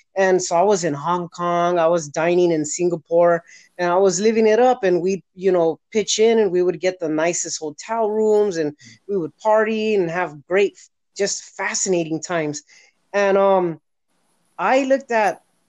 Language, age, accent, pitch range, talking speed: English, 30-49, American, 160-195 Hz, 180 wpm